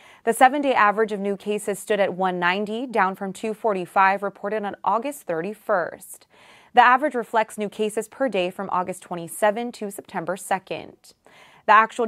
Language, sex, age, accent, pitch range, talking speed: English, female, 20-39, American, 190-230 Hz, 155 wpm